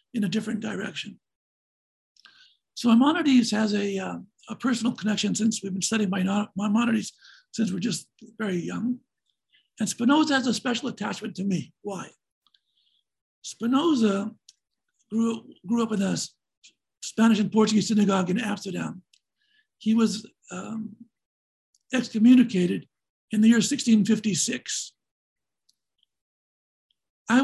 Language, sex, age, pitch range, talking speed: English, male, 60-79, 205-245 Hz, 115 wpm